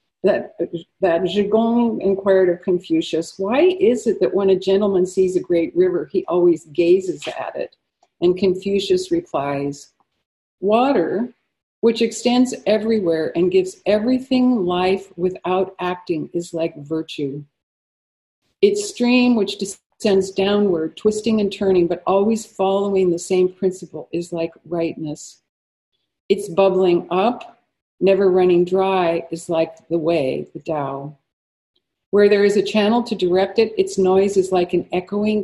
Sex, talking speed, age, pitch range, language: female, 135 wpm, 50-69, 175-215 Hz, English